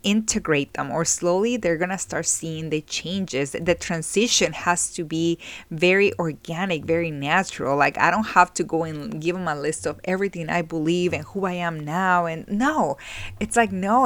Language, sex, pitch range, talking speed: English, female, 150-185 Hz, 190 wpm